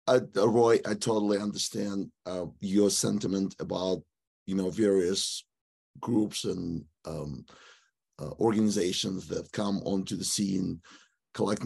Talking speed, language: 115 wpm, English